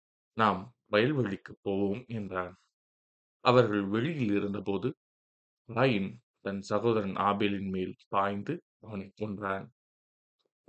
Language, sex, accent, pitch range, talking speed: Tamil, male, native, 100-115 Hz, 85 wpm